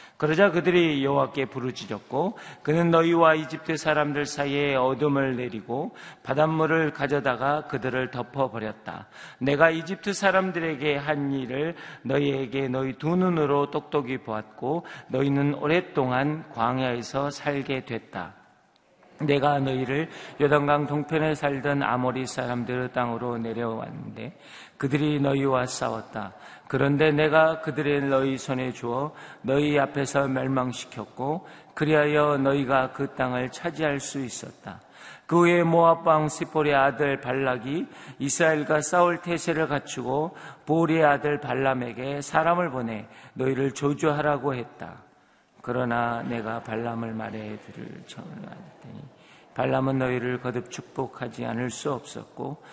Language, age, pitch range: Korean, 40-59, 130-150 Hz